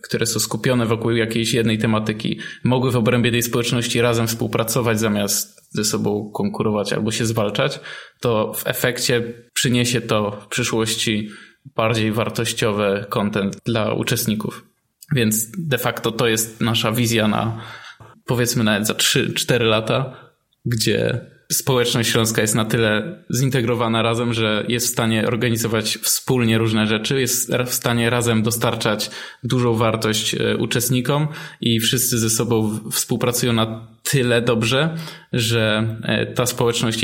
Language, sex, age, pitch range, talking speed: Polish, male, 20-39, 110-125 Hz, 130 wpm